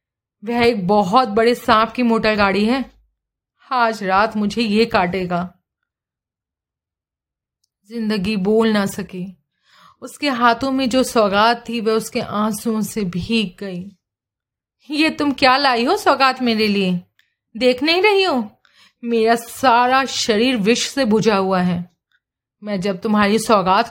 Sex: female